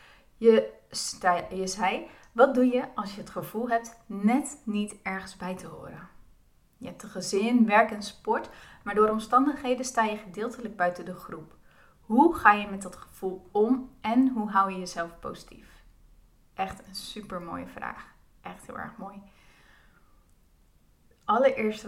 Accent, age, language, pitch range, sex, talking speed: Dutch, 30-49, Dutch, 190-220 Hz, female, 155 wpm